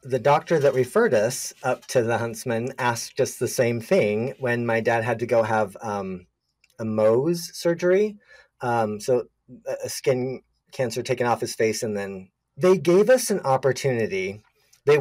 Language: English